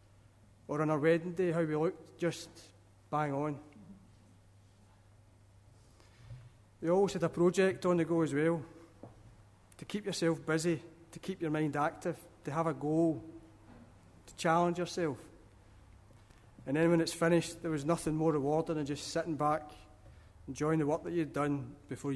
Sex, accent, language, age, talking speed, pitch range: male, British, English, 30-49, 155 wpm, 110-160 Hz